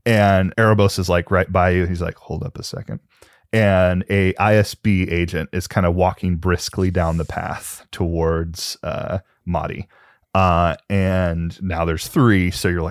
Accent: American